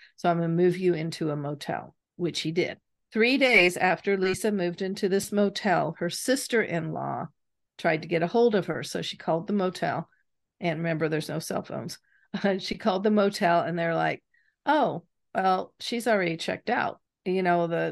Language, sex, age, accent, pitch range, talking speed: English, female, 50-69, American, 165-200 Hz, 185 wpm